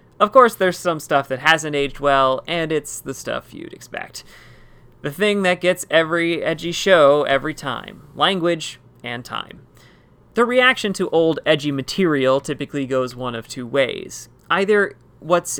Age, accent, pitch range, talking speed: 30-49, American, 130-170 Hz, 160 wpm